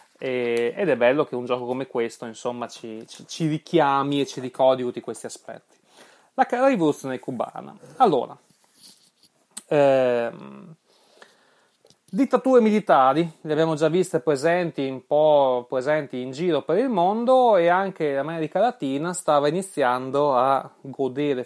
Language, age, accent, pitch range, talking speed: Italian, 30-49, native, 130-180 Hz, 130 wpm